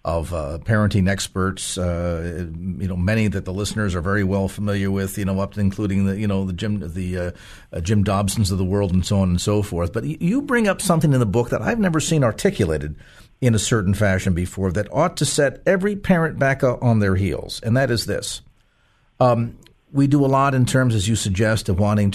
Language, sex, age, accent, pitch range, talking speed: English, male, 50-69, American, 95-140 Hz, 225 wpm